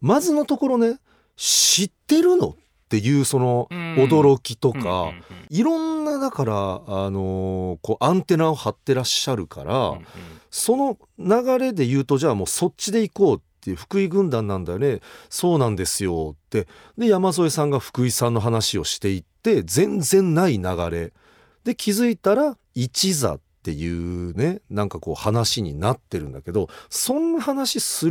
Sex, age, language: male, 40-59, Japanese